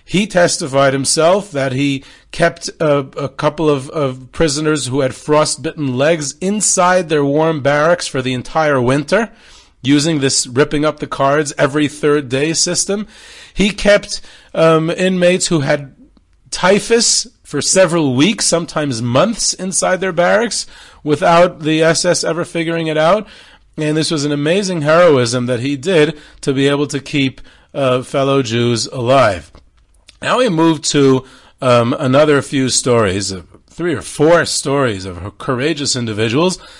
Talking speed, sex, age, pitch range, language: 135 wpm, male, 30-49, 135-165 Hz, English